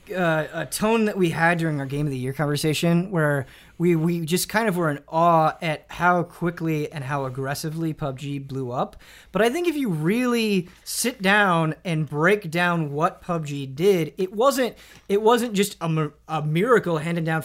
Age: 30-49